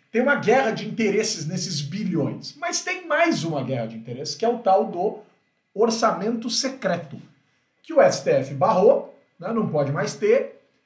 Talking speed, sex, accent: 165 wpm, male, Brazilian